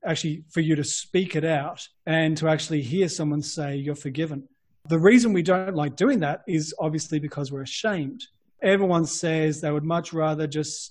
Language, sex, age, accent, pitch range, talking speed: English, male, 30-49, Australian, 150-175 Hz, 185 wpm